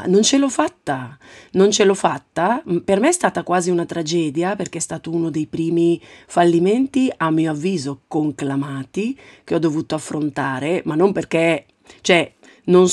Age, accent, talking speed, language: 40-59, native, 160 wpm, Italian